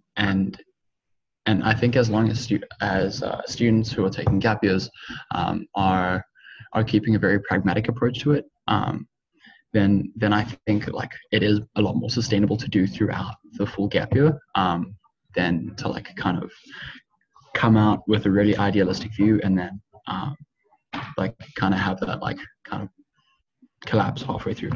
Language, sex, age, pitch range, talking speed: English, male, 10-29, 100-115 Hz, 175 wpm